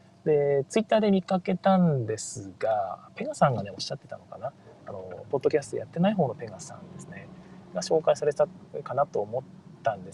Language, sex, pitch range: Japanese, male, 155-195 Hz